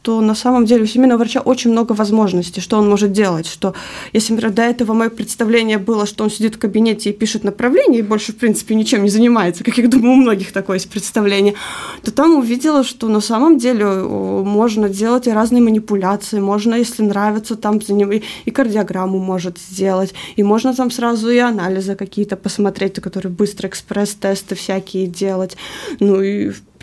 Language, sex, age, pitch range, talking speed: Russian, female, 20-39, 195-240 Hz, 185 wpm